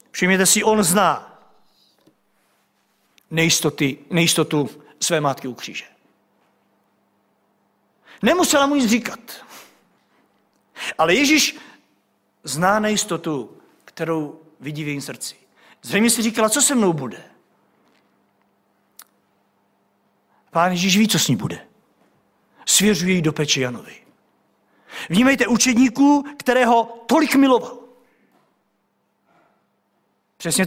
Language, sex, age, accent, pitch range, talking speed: Czech, male, 50-69, native, 175-250 Hz, 90 wpm